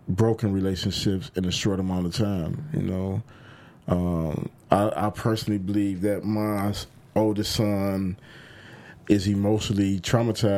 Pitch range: 90-110 Hz